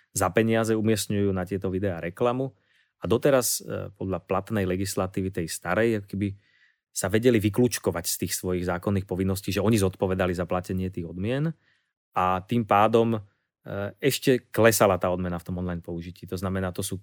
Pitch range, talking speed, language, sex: 95-110 Hz, 160 wpm, Slovak, male